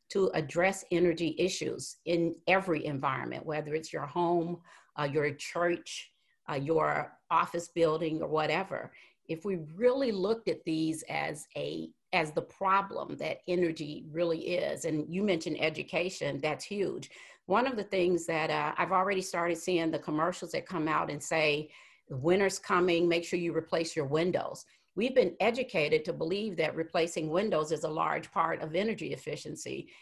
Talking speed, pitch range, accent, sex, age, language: 160 wpm, 160-195 Hz, American, female, 50-69, English